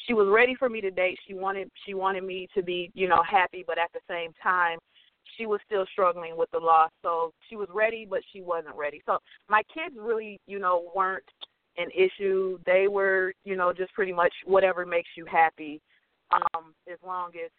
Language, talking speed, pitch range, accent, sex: English, 210 wpm, 175-230 Hz, American, female